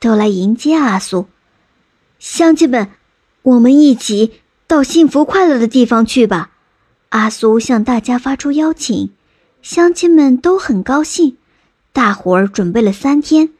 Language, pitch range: Chinese, 220-310 Hz